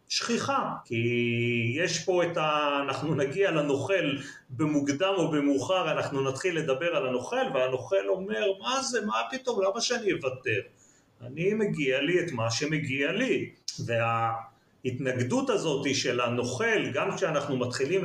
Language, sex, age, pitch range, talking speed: Hebrew, male, 40-59, 125-185 Hz, 135 wpm